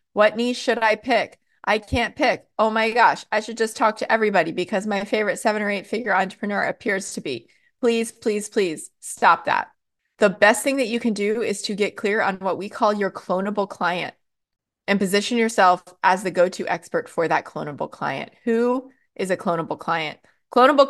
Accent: American